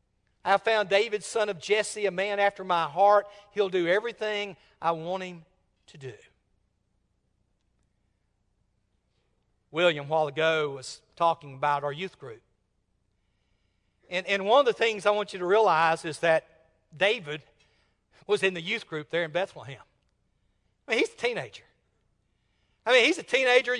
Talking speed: 150 wpm